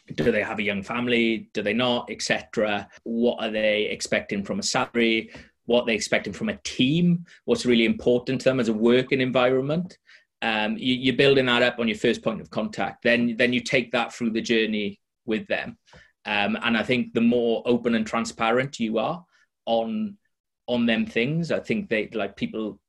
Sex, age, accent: male, 30-49, British